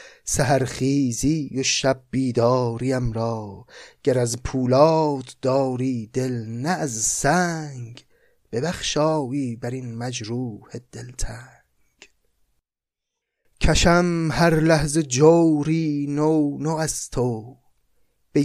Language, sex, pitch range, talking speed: Persian, male, 115-145 Hz, 90 wpm